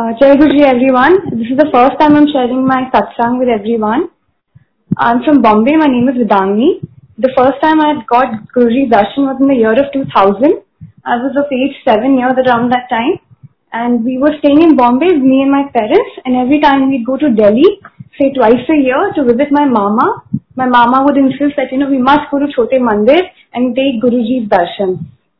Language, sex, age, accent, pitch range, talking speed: Hindi, female, 20-39, native, 240-285 Hz, 205 wpm